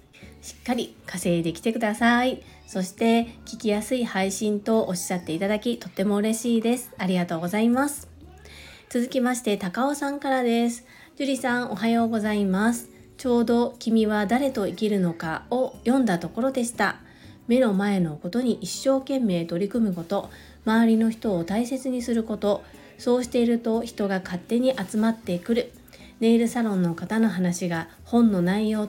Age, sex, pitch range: 40-59, female, 190-240 Hz